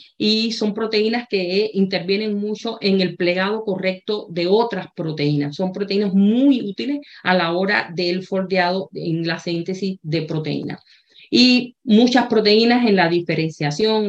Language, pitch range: Spanish, 180-215 Hz